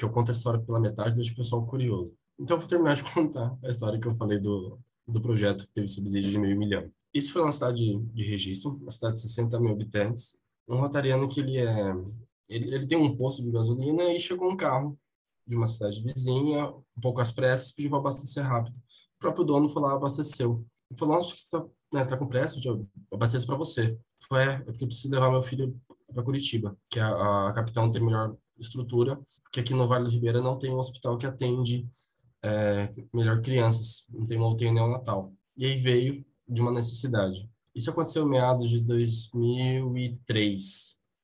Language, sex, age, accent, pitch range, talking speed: Portuguese, male, 10-29, Brazilian, 115-135 Hz, 205 wpm